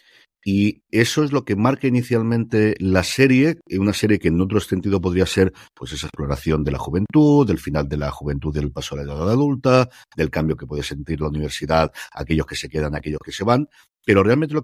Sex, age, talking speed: male, 50-69, 220 wpm